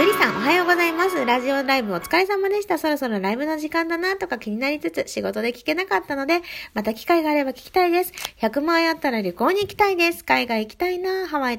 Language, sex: Japanese, female